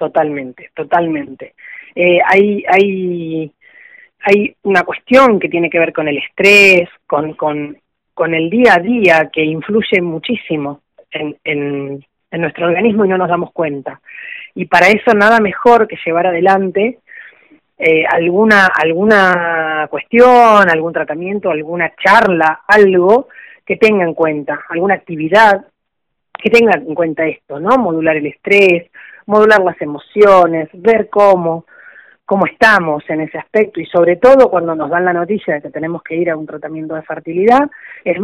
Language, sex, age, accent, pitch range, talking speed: Spanish, female, 30-49, Argentinian, 160-215 Hz, 150 wpm